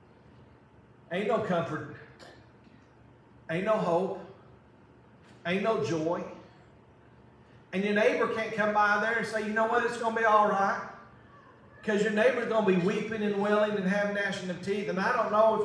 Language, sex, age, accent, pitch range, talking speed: English, male, 40-59, American, 135-185 Hz, 175 wpm